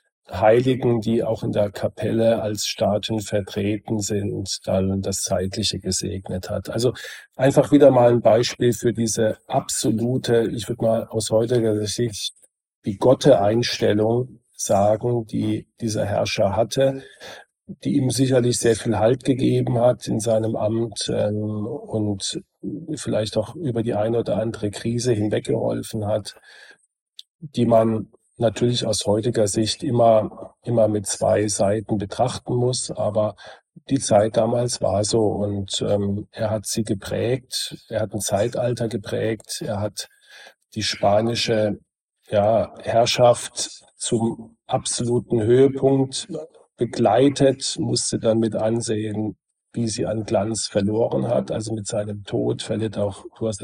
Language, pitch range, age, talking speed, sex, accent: German, 105-120 Hz, 40-59, 130 wpm, male, German